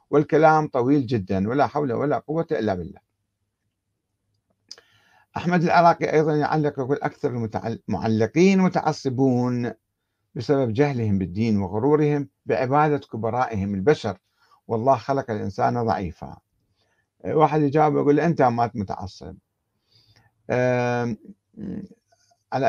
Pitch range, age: 105-135 Hz, 60-79